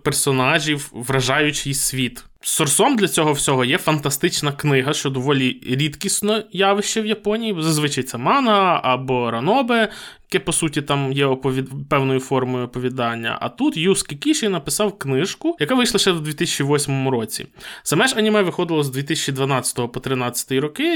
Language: Ukrainian